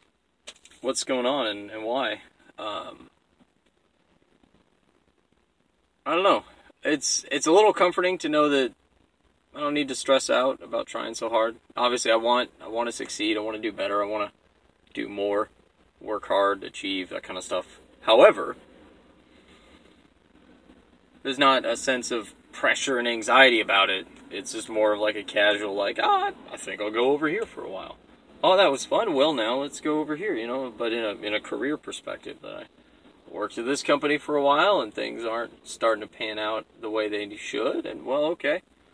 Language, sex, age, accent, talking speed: English, male, 20-39, American, 190 wpm